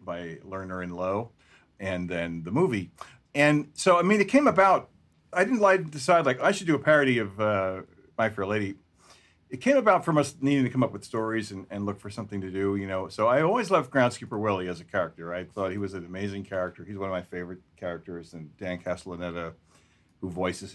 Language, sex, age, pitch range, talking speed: English, male, 40-59, 95-125 Hz, 220 wpm